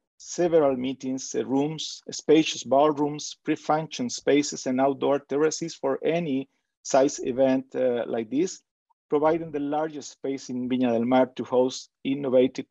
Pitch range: 125-160 Hz